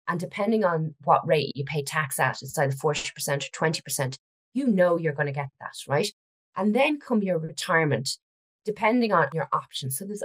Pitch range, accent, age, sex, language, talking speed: 140-185 Hz, Irish, 30-49, female, English, 195 wpm